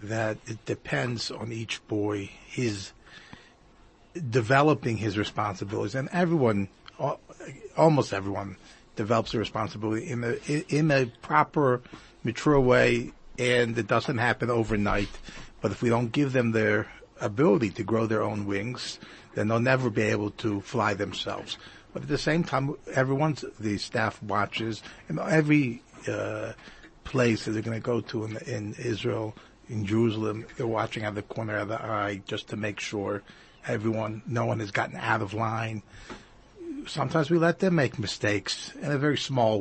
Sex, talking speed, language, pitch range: male, 160 wpm, English, 110-130 Hz